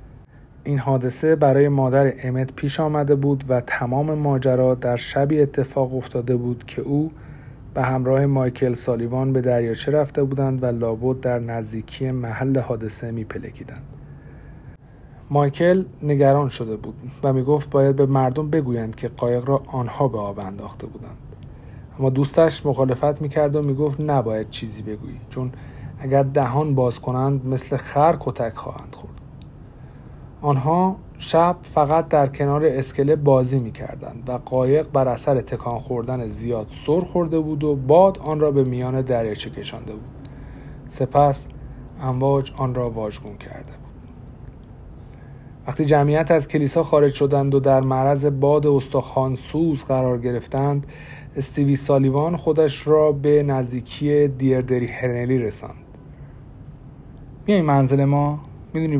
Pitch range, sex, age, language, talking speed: 125-145 Hz, male, 50-69, Persian, 135 wpm